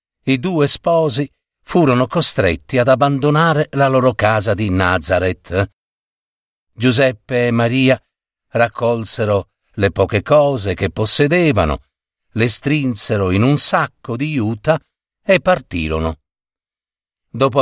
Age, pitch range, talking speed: 50-69, 100-145 Hz, 105 wpm